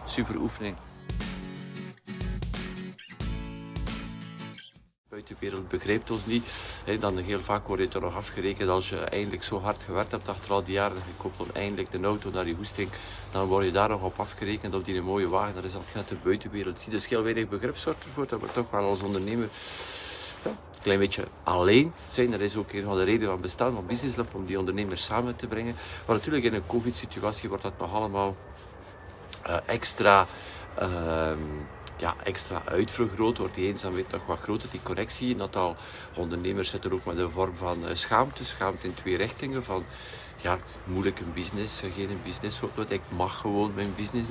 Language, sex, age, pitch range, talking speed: Dutch, male, 50-69, 95-110 Hz, 190 wpm